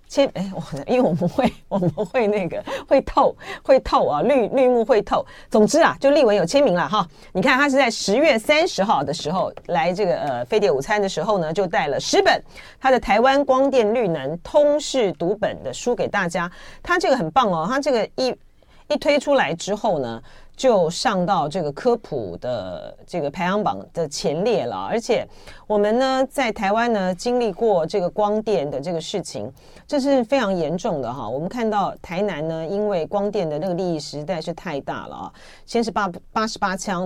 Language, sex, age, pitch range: Chinese, female, 40-59, 175-260 Hz